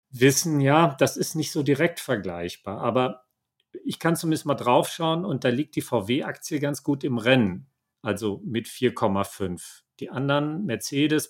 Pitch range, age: 115-150 Hz, 40-59